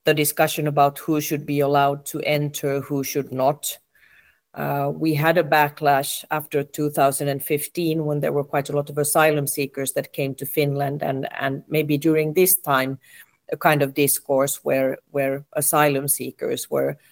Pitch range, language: 140-155 Hz, Finnish